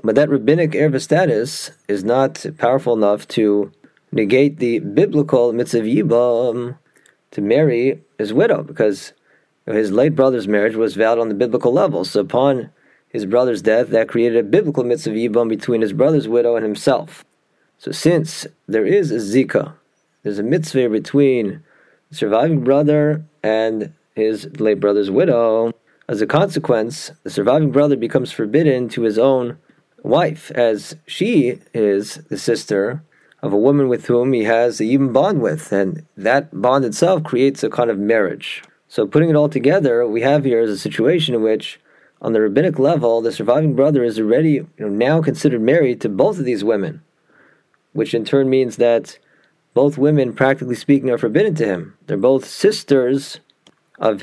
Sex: male